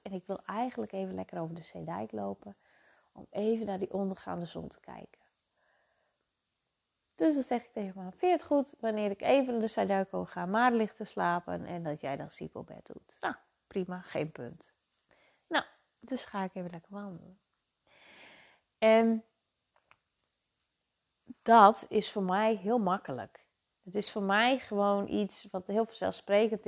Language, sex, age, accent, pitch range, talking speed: Dutch, female, 30-49, Dutch, 165-210 Hz, 170 wpm